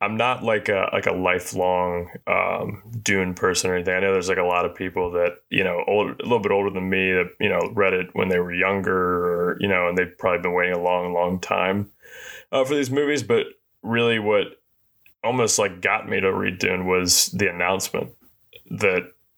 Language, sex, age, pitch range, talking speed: English, male, 20-39, 90-100 Hz, 215 wpm